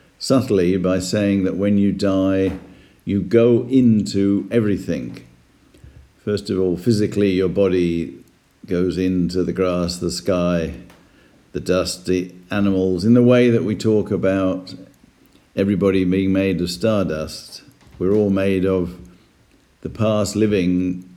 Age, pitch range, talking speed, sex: 50-69, 90-100 Hz, 130 wpm, male